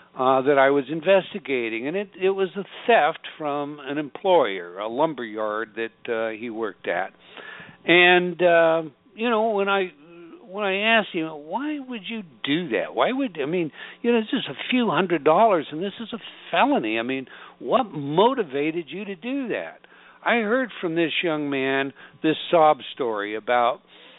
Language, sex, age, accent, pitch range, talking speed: English, male, 60-79, American, 135-180 Hz, 175 wpm